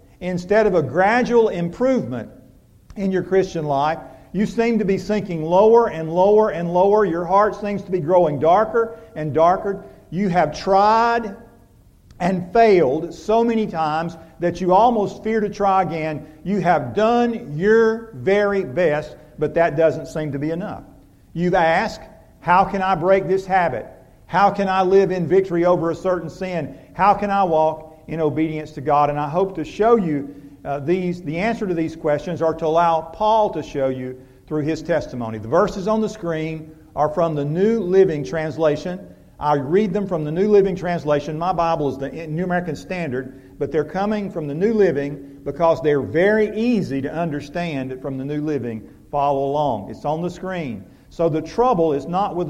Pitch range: 150-195 Hz